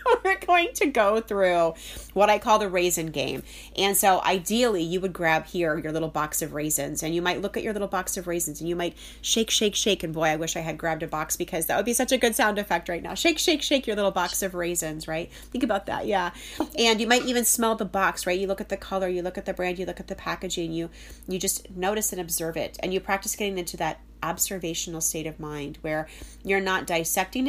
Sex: female